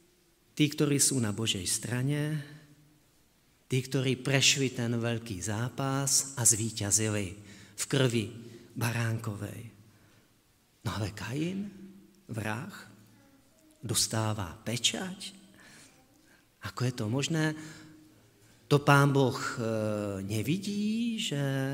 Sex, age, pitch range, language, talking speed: male, 40-59, 110-155 Hz, Slovak, 90 wpm